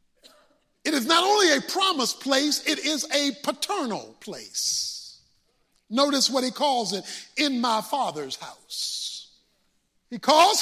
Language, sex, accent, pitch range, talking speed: English, male, American, 210-280 Hz, 130 wpm